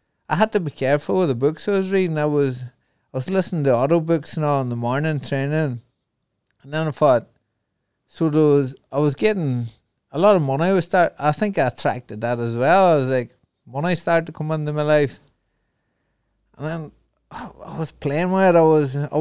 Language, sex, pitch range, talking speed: English, male, 120-155 Hz, 210 wpm